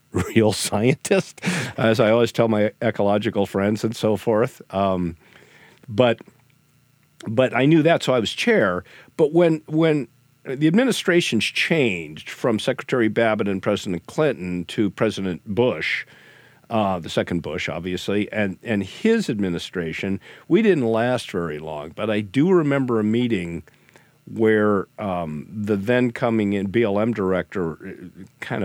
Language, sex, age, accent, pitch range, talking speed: English, male, 50-69, American, 100-155 Hz, 140 wpm